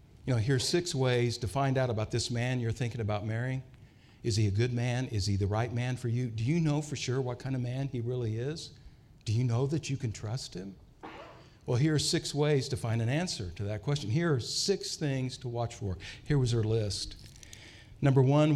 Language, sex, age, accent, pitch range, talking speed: English, male, 50-69, American, 115-145 Hz, 235 wpm